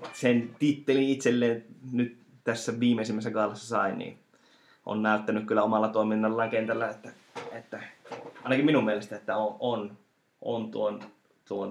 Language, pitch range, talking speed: Finnish, 105-120 Hz, 130 wpm